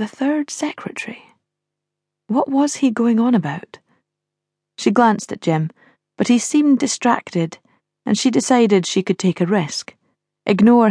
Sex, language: female, English